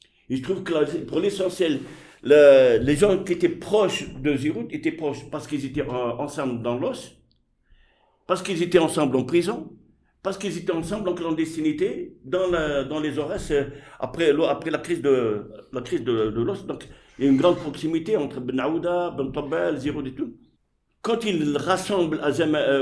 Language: English